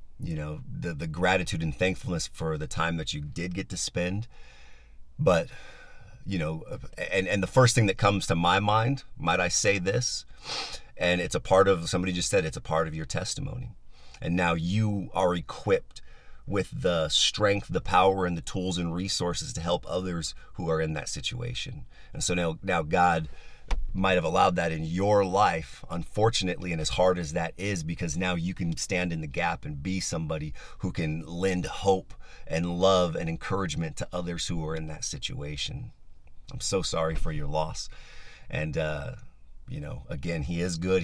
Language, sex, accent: English, male, American